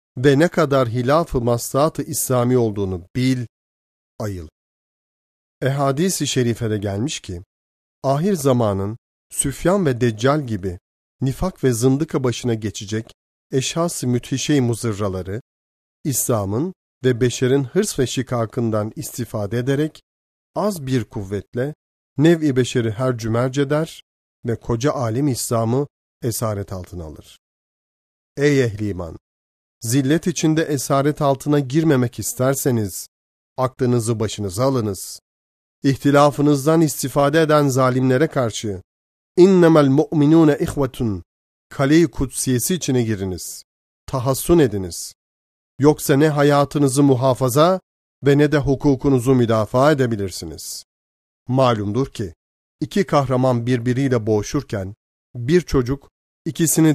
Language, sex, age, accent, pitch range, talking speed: Turkish, male, 40-59, native, 100-145 Hz, 100 wpm